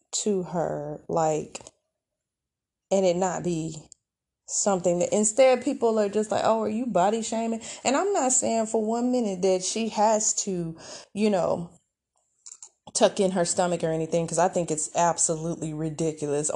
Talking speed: 160 wpm